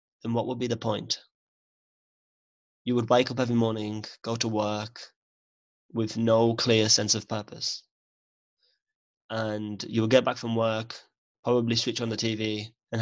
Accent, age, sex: British, 20-39, male